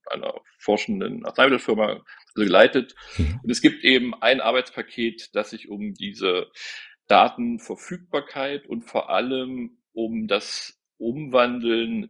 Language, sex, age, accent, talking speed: German, male, 40-59, German, 105 wpm